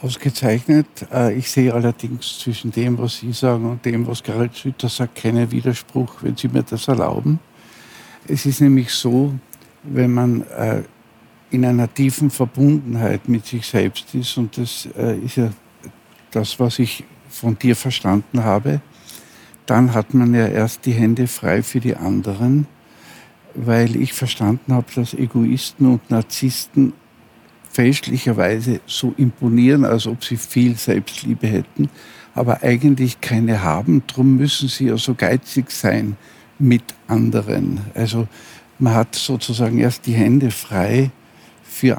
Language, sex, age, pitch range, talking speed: German, male, 60-79, 115-130 Hz, 140 wpm